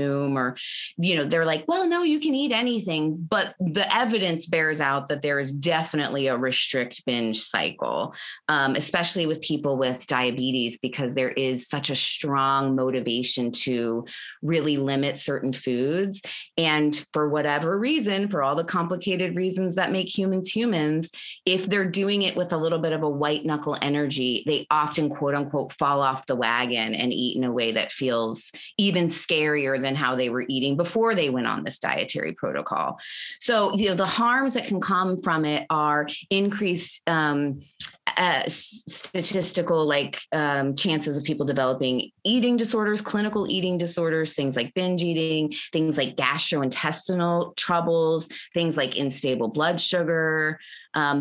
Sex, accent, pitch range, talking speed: female, American, 135-180 Hz, 160 wpm